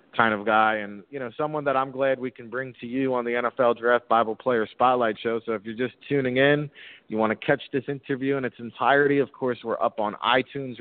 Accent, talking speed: American, 245 wpm